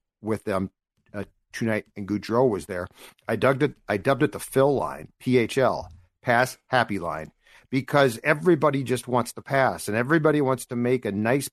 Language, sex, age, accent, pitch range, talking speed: English, male, 50-69, American, 105-140 Hz, 175 wpm